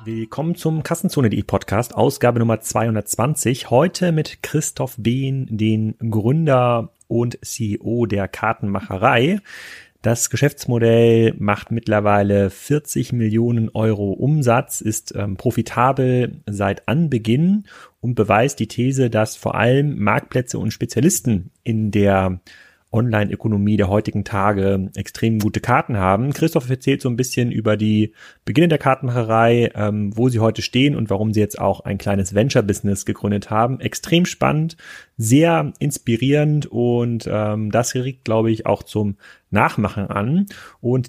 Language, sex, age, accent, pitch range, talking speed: German, male, 30-49, German, 105-135 Hz, 130 wpm